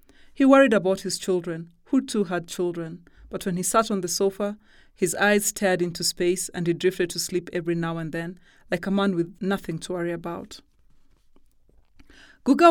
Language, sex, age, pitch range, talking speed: English, female, 30-49, 170-210 Hz, 185 wpm